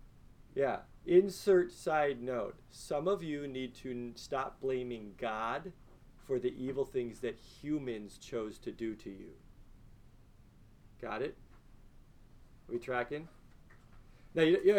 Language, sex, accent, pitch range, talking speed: English, male, American, 120-190 Hz, 130 wpm